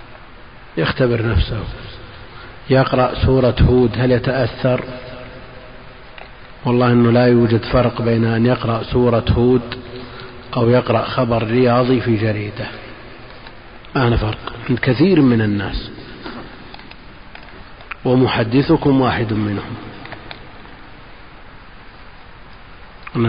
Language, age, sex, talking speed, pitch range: Arabic, 50-69, male, 90 wpm, 115-130 Hz